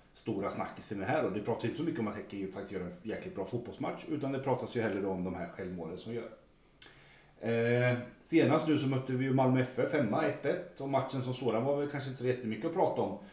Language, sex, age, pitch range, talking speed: Swedish, male, 30-49, 105-135 Hz, 250 wpm